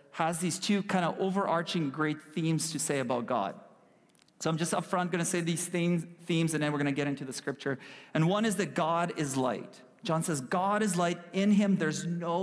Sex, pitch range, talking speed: male, 150-195 Hz, 220 wpm